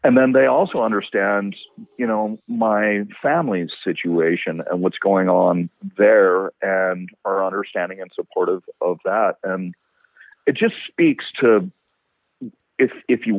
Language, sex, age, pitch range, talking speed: English, male, 40-59, 95-120 Hz, 135 wpm